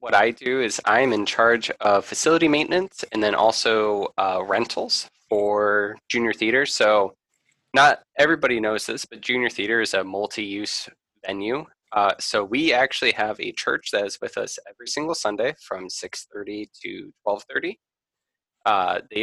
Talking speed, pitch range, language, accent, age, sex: 155 wpm, 100-145 Hz, English, American, 20-39, male